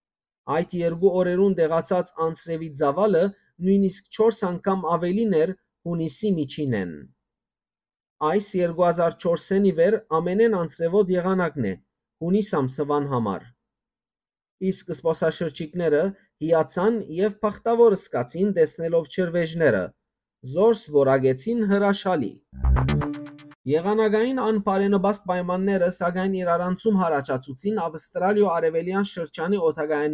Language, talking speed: English, 105 wpm